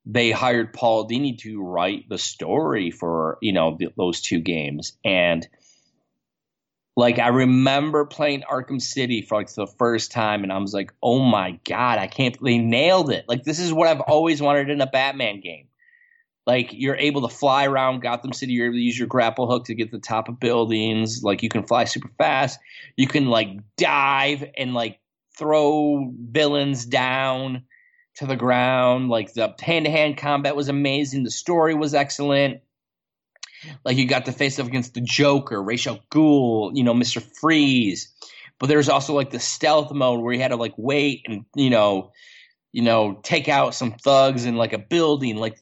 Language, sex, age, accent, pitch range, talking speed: English, male, 20-39, American, 120-145 Hz, 185 wpm